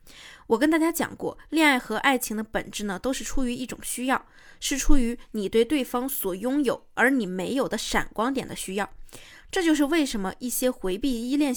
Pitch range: 215-275 Hz